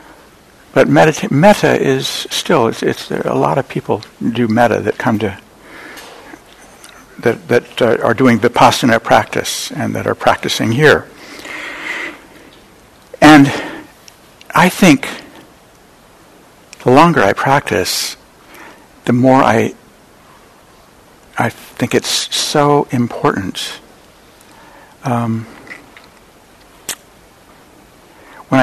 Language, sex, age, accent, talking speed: English, male, 60-79, American, 90 wpm